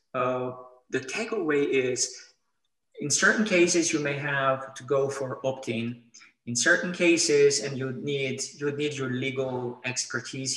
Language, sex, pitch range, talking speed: English, male, 120-165 Hz, 150 wpm